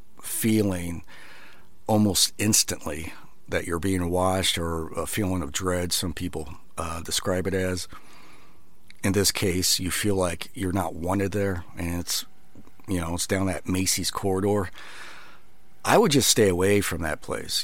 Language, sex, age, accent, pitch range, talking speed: English, male, 40-59, American, 90-105 Hz, 155 wpm